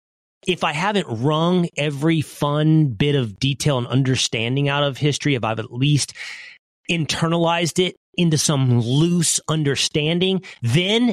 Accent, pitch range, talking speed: American, 115-165 Hz, 135 wpm